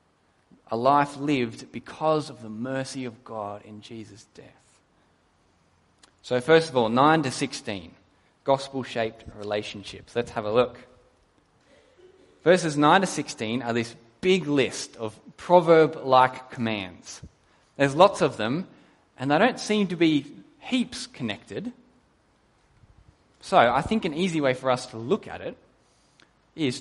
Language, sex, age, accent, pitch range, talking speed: English, male, 10-29, Australian, 110-150 Hz, 135 wpm